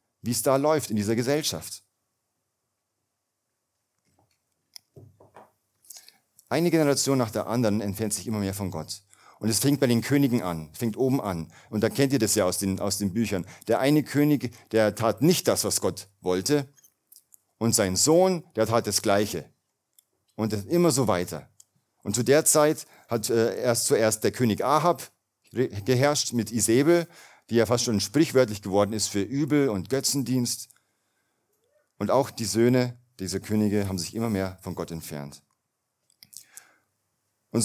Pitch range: 100-135 Hz